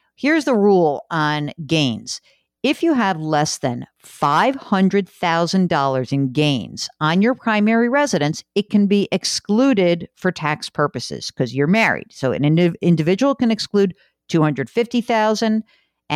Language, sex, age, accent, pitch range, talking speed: English, female, 50-69, American, 145-215 Hz, 125 wpm